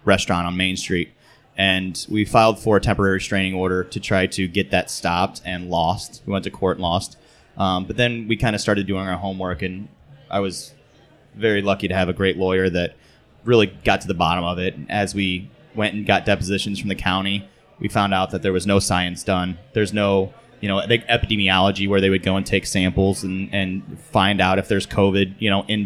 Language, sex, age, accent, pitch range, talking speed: English, male, 20-39, American, 95-110 Hz, 220 wpm